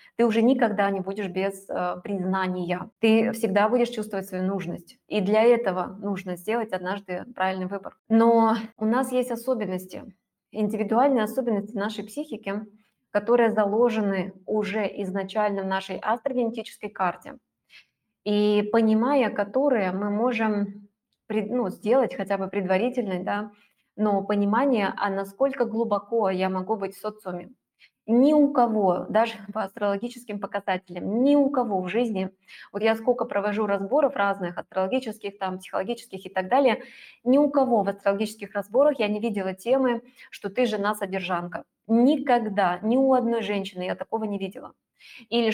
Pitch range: 195-235 Hz